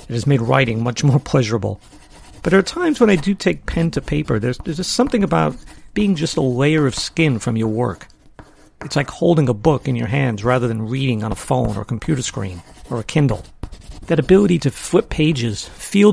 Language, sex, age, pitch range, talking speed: English, male, 50-69, 120-180 Hz, 220 wpm